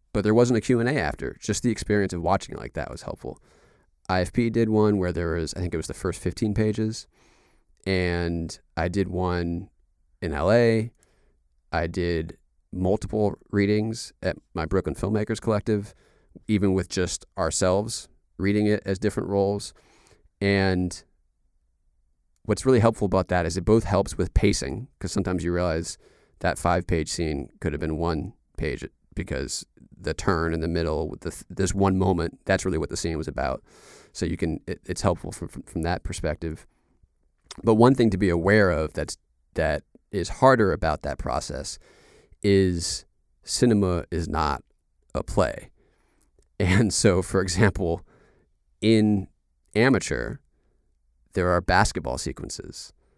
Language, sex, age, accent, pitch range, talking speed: English, male, 30-49, American, 80-100 Hz, 155 wpm